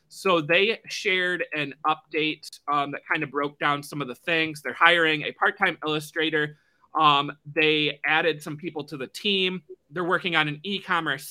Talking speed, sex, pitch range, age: 175 wpm, male, 140-165 Hz, 30-49